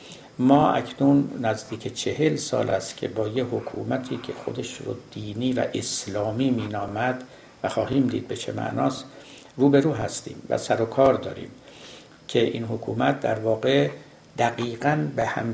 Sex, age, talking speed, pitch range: male, 60-79, 155 wpm, 110-140 Hz